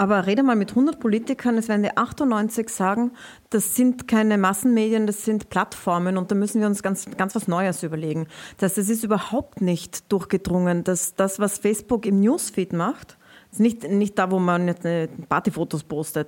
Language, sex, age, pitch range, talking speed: German, female, 30-49, 165-210 Hz, 180 wpm